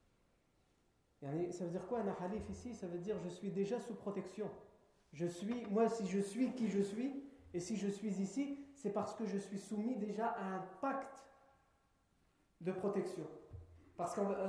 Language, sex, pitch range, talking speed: French, male, 170-235 Hz, 175 wpm